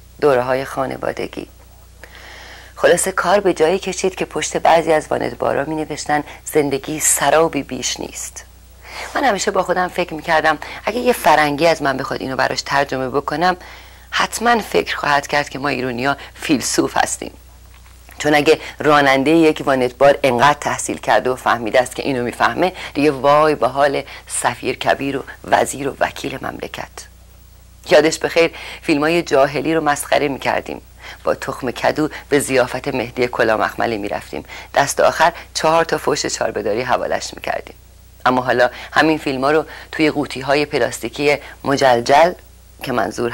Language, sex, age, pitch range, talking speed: Persian, female, 40-59, 125-155 Hz, 150 wpm